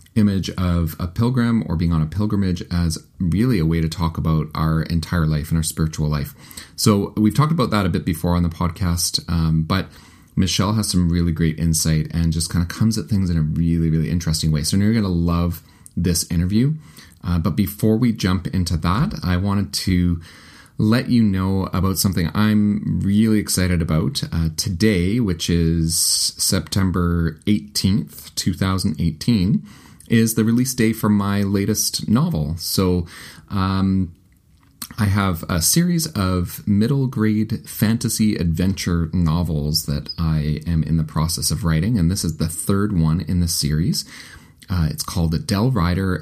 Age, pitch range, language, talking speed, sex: 30-49, 80-105 Hz, English, 165 wpm, male